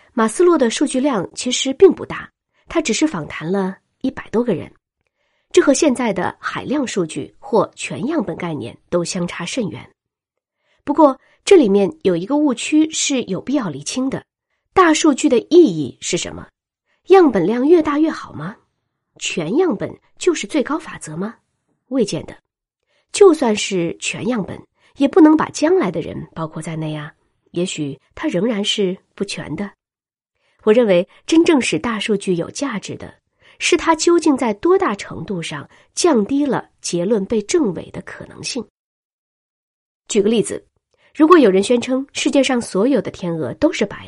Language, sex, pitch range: Chinese, female, 185-300 Hz